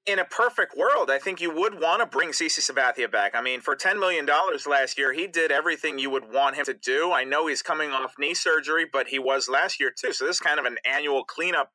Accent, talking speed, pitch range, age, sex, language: American, 260 wpm, 130-175 Hz, 30-49, male, English